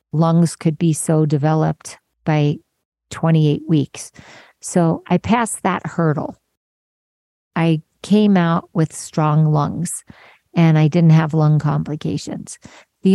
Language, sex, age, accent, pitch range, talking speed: English, female, 40-59, American, 150-185 Hz, 120 wpm